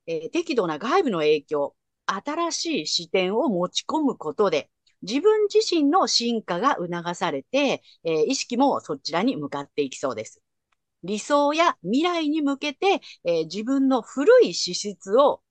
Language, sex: Japanese, female